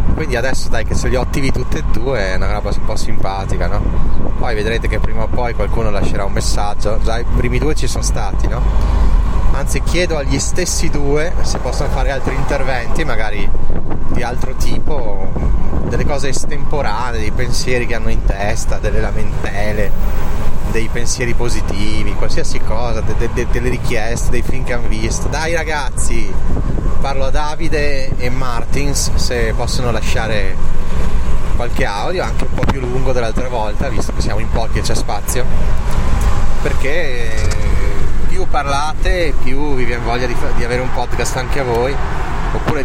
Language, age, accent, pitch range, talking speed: Italian, 30-49, native, 85-120 Hz, 160 wpm